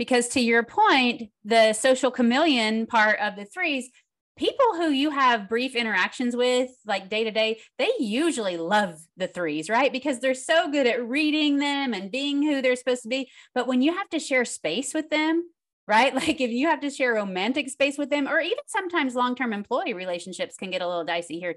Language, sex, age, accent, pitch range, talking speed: English, female, 30-49, American, 210-265 Hz, 205 wpm